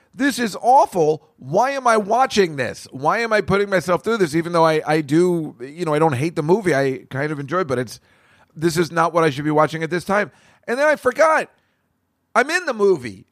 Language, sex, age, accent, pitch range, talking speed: English, male, 40-59, American, 185-310 Hz, 240 wpm